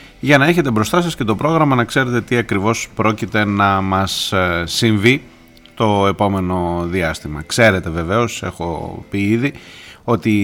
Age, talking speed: 30-49, 145 wpm